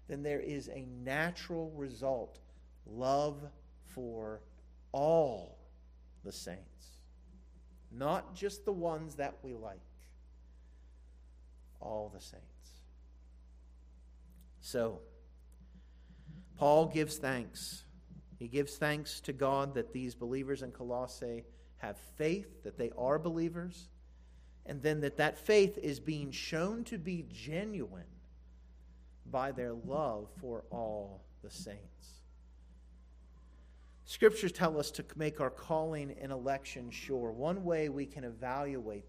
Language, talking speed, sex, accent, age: English, 115 wpm, male, American, 50-69